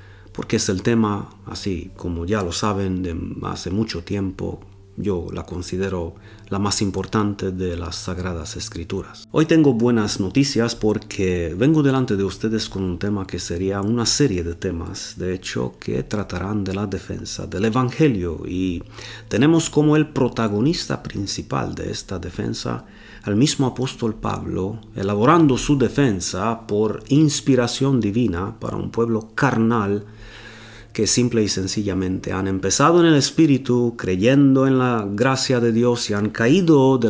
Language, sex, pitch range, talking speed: Romanian, male, 95-120 Hz, 150 wpm